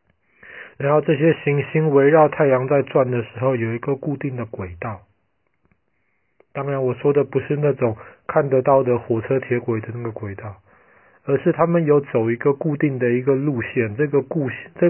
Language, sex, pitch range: Chinese, male, 115-140 Hz